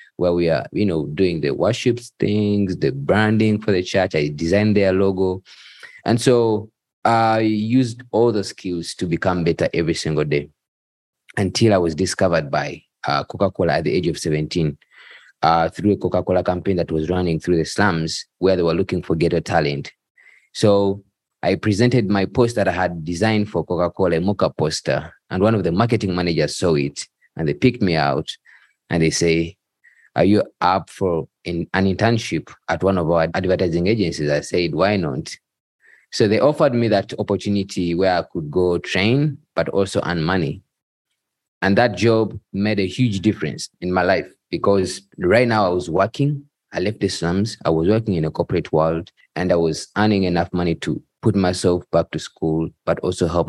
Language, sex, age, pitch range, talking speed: English, male, 20-39, 85-105 Hz, 185 wpm